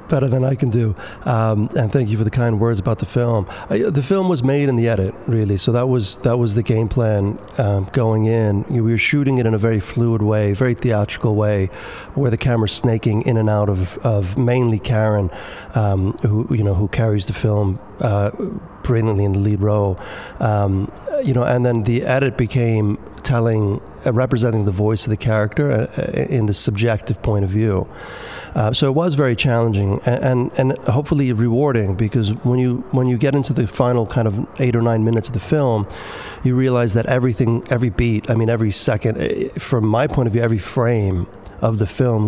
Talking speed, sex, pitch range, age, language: 205 wpm, male, 105-125 Hz, 30-49, English